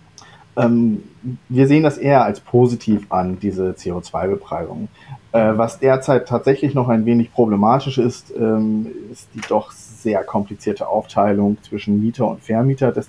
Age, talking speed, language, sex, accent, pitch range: 30-49, 130 wpm, German, male, German, 105-125 Hz